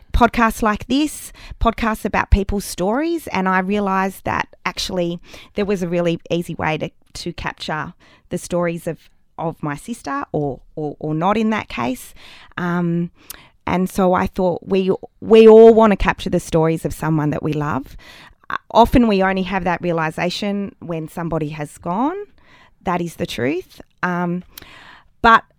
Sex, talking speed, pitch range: female, 160 wpm, 170-220 Hz